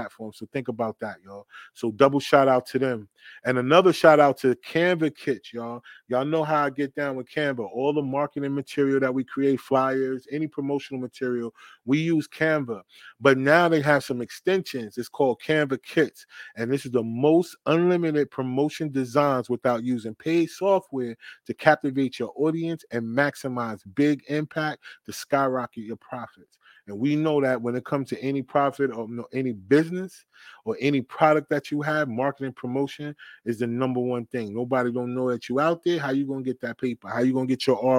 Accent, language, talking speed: American, English, 190 wpm